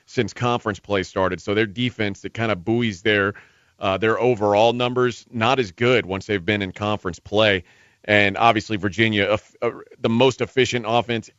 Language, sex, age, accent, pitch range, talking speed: English, male, 40-59, American, 100-125 Hz, 180 wpm